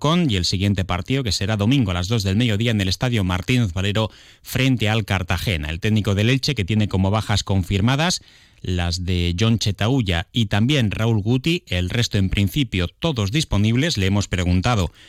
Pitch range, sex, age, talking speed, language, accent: 90-110 Hz, male, 30-49, 185 wpm, Spanish, Spanish